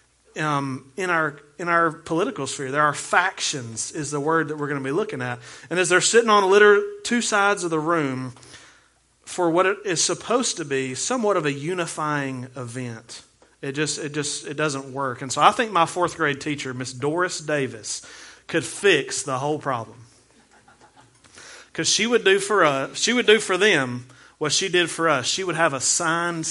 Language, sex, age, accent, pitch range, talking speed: English, male, 30-49, American, 135-185 Hz, 205 wpm